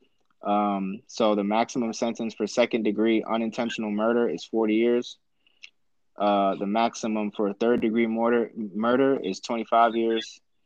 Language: English